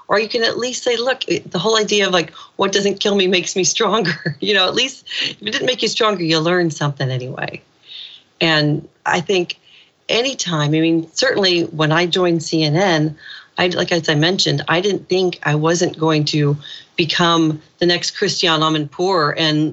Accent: American